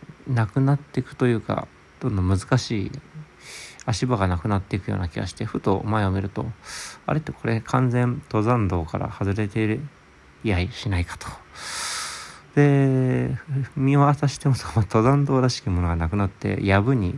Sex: male